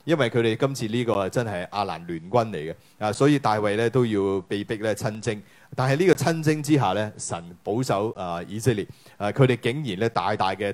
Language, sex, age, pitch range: Chinese, male, 30-49, 100-130 Hz